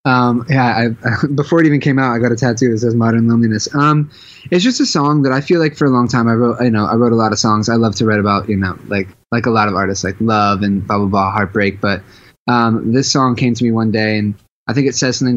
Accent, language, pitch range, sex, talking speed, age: American, English, 110-125 Hz, male, 295 wpm, 20-39